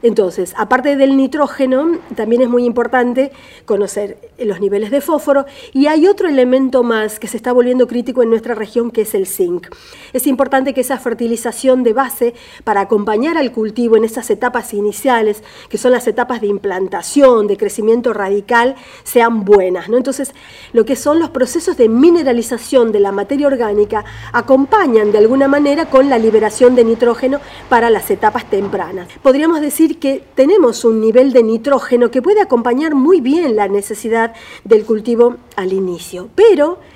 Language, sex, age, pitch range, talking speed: Spanish, female, 40-59, 225-285 Hz, 165 wpm